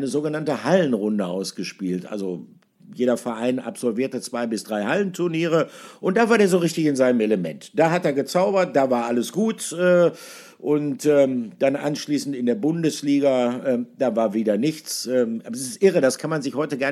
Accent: German